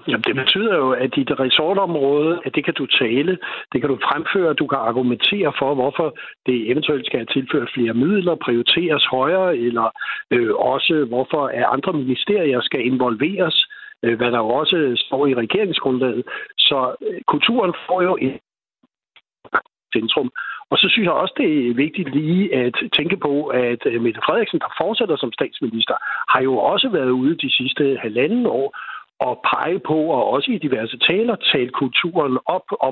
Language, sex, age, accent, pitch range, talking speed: Danish, male, 60-79, native, 125-165 Hz, 170 wpm